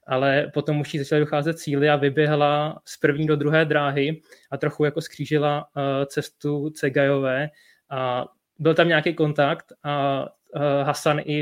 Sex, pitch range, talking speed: male, 140-155 Hz, 160 wpm